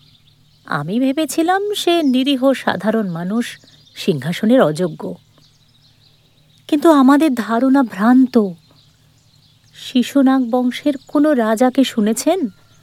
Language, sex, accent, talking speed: Bengali, female, native, 80 wpm